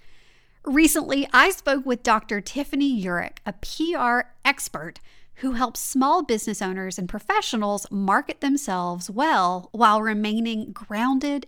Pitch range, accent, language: 195-275 Hz, American, English